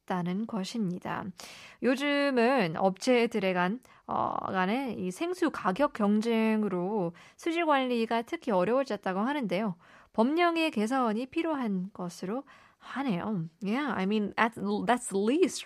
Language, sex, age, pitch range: Korean, female, 20-39, 190-250 Hz